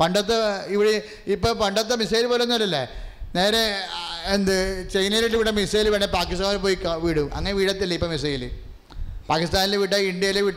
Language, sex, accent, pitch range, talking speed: English, male, Indian, 150-210 Hz, 115 wpm